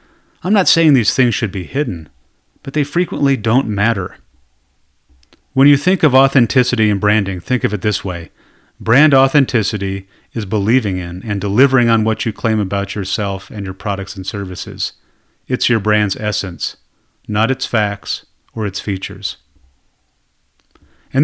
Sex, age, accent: male, 30-49, American